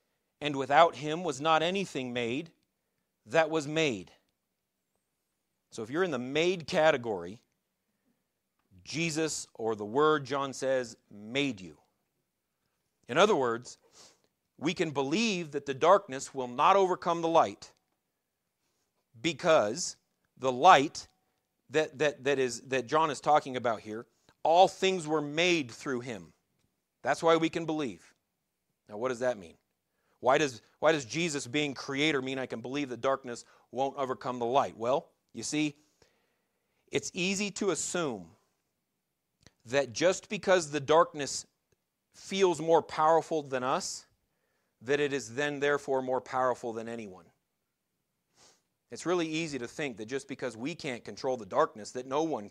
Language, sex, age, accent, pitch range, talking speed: English, male, 40-59, American, 125-160 Hz, 145 wpm